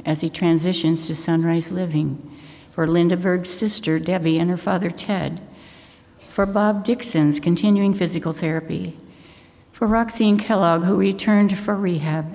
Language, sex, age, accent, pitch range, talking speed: English, female, 60-79, American, 160-185 Hz, 135 wpm